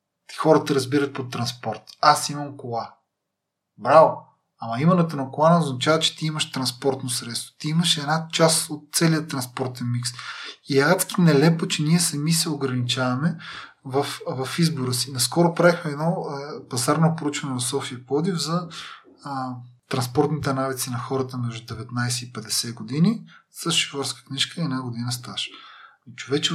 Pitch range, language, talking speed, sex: 125-160 Hz, Bulgarian, 145 wpm, male